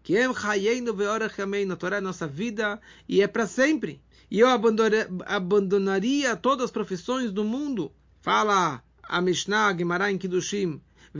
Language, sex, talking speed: English, male, 145 wpm